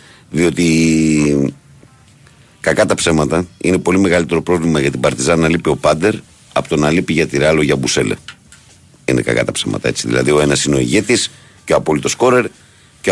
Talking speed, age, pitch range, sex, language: 175 wpm, 50-69, 75-90 Hz, male, Greek